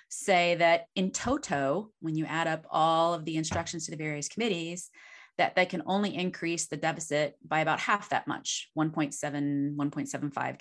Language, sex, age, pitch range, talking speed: English, female, 30-49, 155-200 Hz, 170 wpm